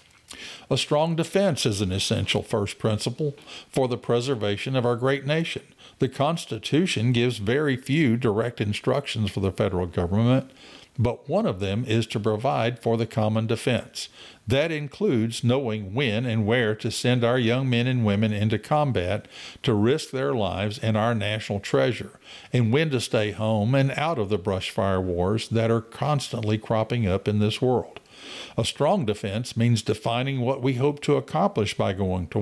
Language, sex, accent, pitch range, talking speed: English, male, American, 110-130 Hz, 170 wpm